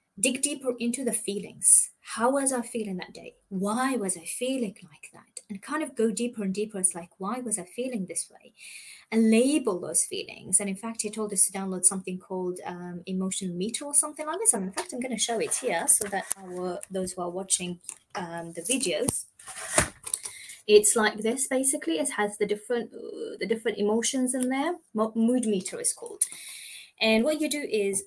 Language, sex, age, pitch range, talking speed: English, female, 20-39, 190-245 Hz, 205 wpm